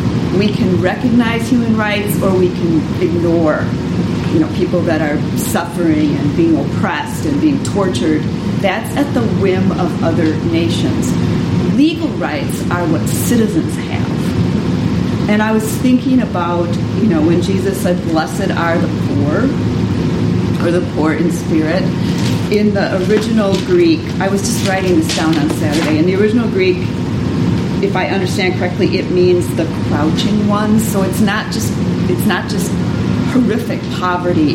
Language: English